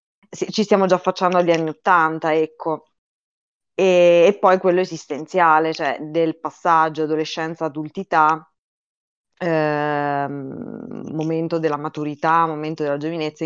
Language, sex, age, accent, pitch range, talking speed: Italian, female, 20-39, native, 155-175 Hz, 105 wpm